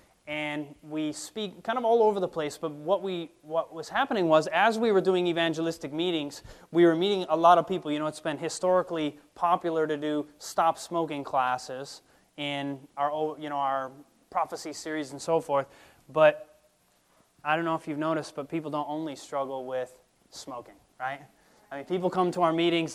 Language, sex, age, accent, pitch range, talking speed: English, male, 30-49, American, 145-170 Hz, 190 wpm